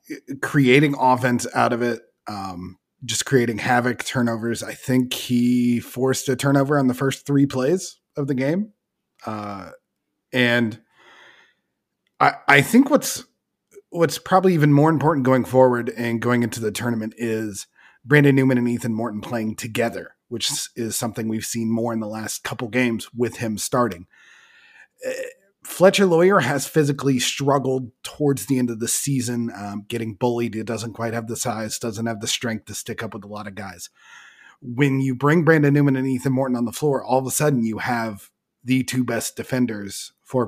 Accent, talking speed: American, 175 wpm